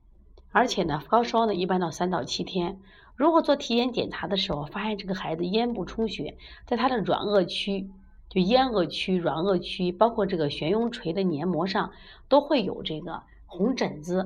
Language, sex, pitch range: Chinese, female, 170-225 Hz